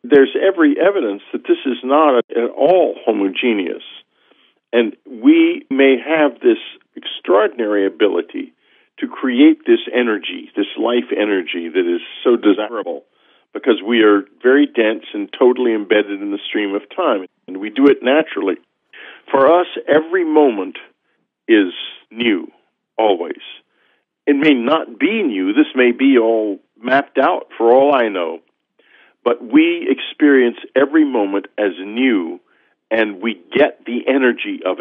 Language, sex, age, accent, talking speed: English, male, 50-69, American, 140 wpm